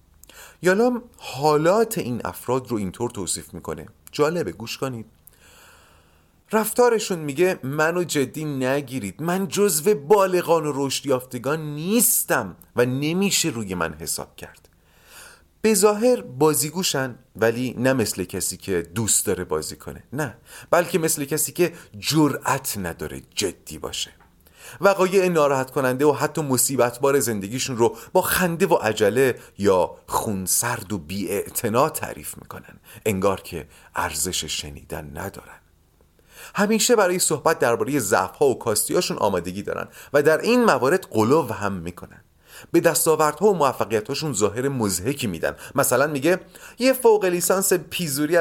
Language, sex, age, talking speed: Persian, male, 40-59, 125 wpm